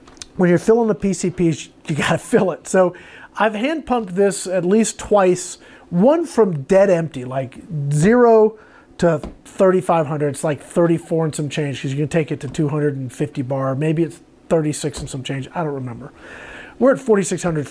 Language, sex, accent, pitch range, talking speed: English, male, American, 150-190 Hz, 175 wpm